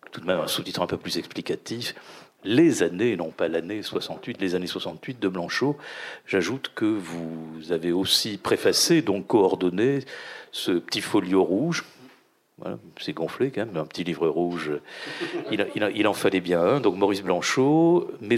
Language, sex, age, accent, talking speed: French, male, 50-69, French, 165 wpm